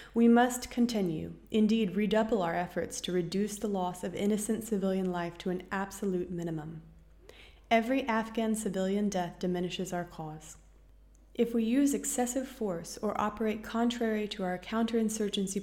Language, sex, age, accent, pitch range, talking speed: English, female, 30-49, American, 175-220 Hz, 140 wpm